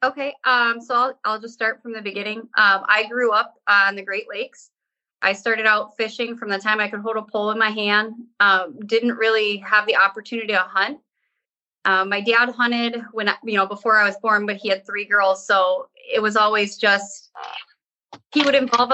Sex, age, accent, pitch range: female, 20-39, American, 200-235 Hz